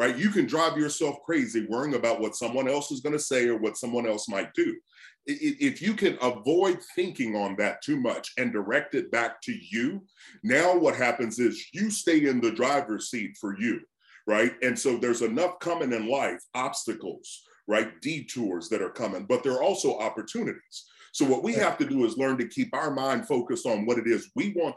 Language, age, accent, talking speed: English, 40-59, American, 210 wpm